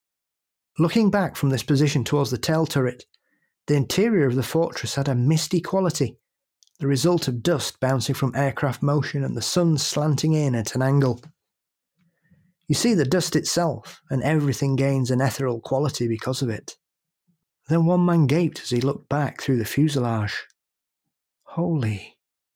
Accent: British